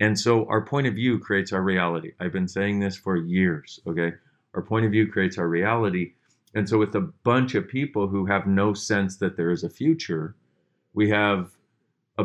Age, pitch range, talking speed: 40-59, 90-110 Hz, 205 wpm